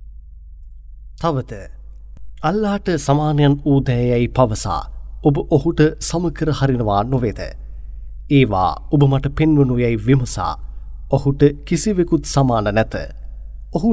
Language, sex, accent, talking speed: English, male, Indian, 90 wpm